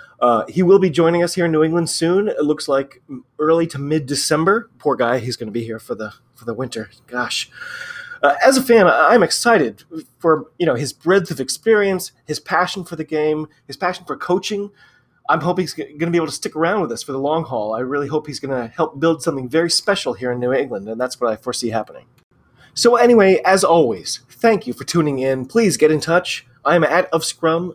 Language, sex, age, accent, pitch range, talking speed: English, male, 30-49, American, 130-175 Hz, 235 wpm